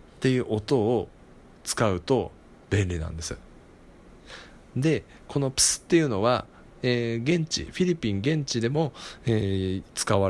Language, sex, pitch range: Japanese, male, 90-130 Hz